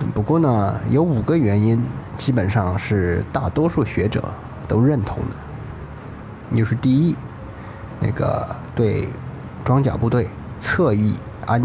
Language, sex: Chinese, male